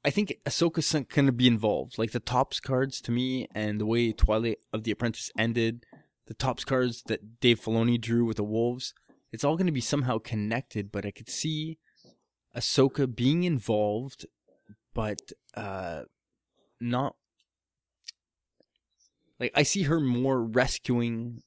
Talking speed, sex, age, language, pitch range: 150 wpm, male, 20-39, English, 105-130 Hz